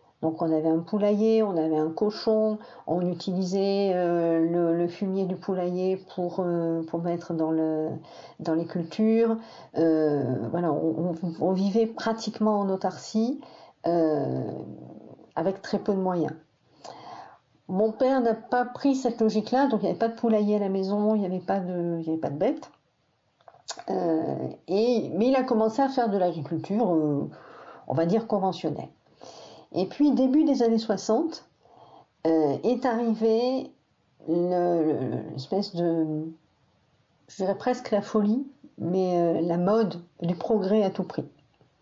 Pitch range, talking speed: 165-220 Hz, 150 wpm